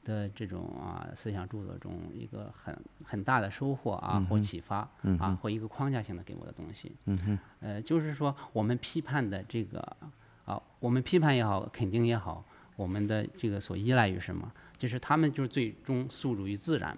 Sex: male